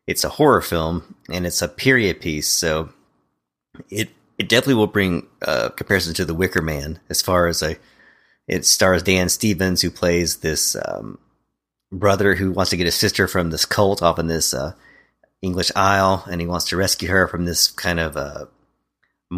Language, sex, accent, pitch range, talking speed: English, male, American, 80-95 Hz, 190 wpm